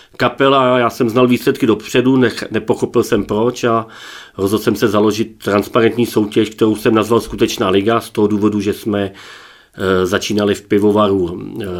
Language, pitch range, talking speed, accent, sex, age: Czech, 105-120 Hz, 165 wpm, native, male, 40-59